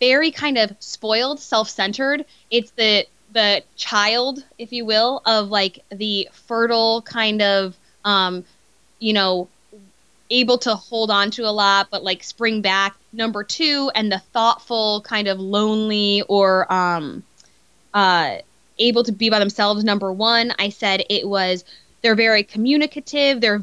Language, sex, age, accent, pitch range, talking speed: English, female, 10-29, American, 195-230 Hz, 145 wpm